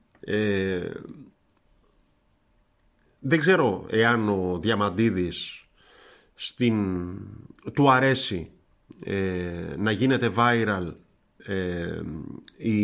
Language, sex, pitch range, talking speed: Greek, male, 100-140 Hz, 50 wpm